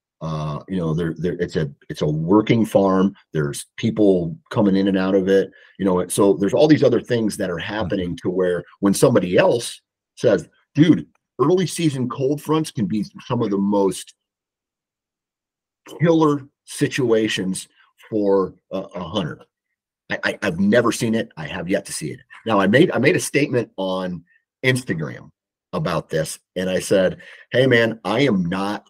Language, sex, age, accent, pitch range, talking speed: English, male, 40-59, American, 90-110 Hz, 175 wpm